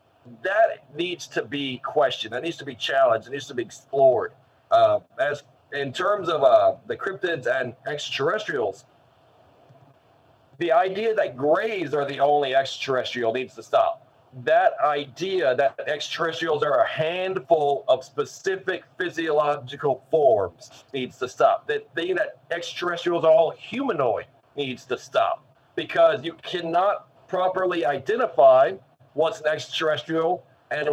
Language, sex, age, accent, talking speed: English, male, 40-59, American, 135 wpm